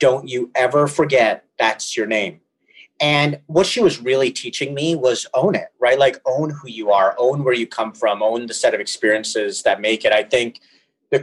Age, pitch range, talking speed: 30-49, 110-140 Hz, 210 wpm